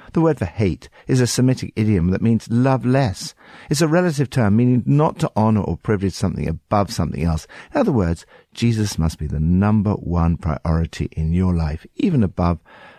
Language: English